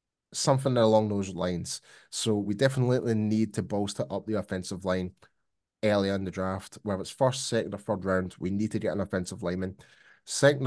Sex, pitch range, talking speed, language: male, 100-120 Hz, 185 wpm, English